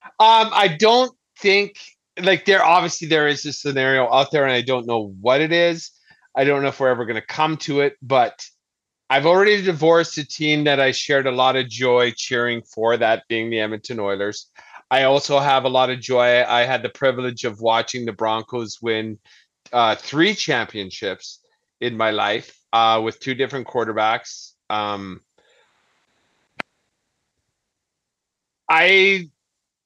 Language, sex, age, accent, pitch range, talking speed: English, male, 30-49, American, 120-155 Hz, 160 wpm